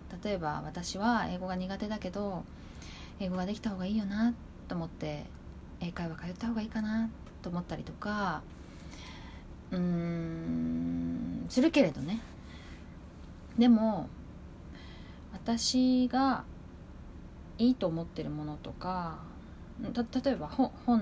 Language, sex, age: Japanese, female, 20-39